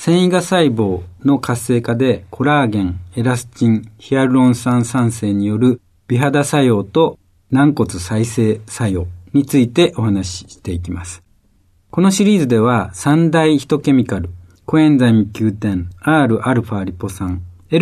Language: Japanese